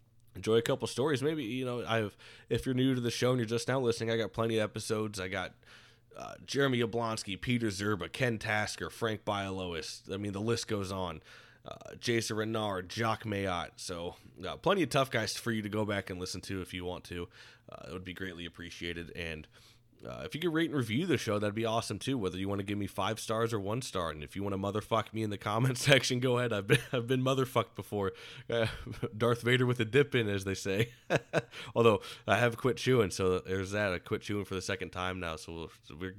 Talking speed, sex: 240 wpm, male